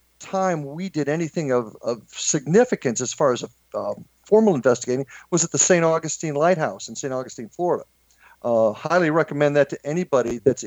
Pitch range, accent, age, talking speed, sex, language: 125-170 Hz, American, 50-69, 175 wpm, male, English